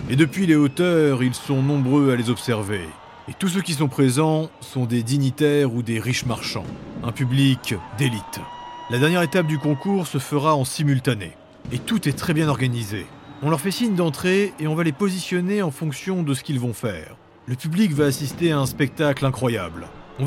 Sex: male